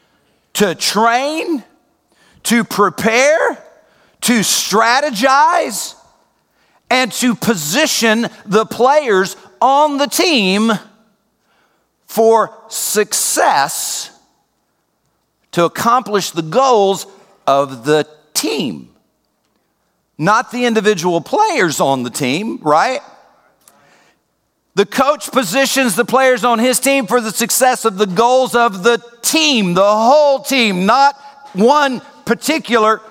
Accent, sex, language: American, male, English